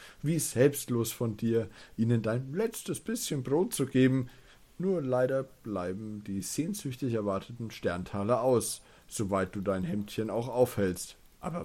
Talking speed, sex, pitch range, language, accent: 135 wpm, male, 100-145 Hz, German, German